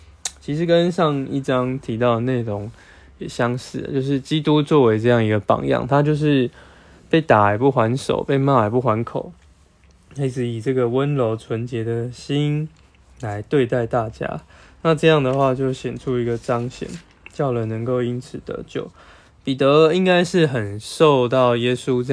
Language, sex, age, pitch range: Chinese, male, 20-39, 105-135 Hz